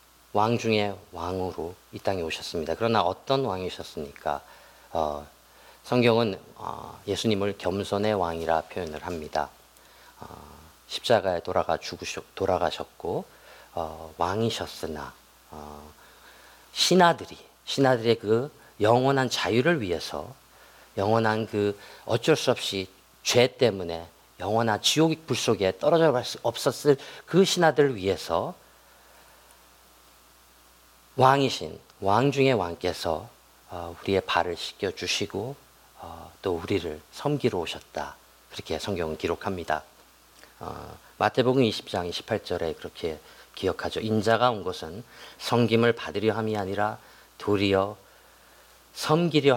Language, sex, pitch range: Korean, male, 80-120 Hz